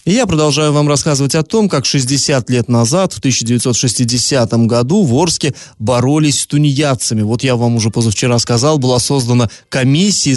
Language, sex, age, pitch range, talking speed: Russian, male, 20-39, 115-155 Hz, 155 wpm